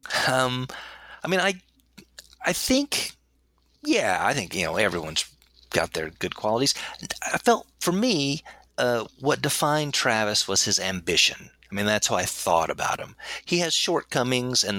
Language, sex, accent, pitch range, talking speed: English, male, American, 95-130 Hz, 160 wpm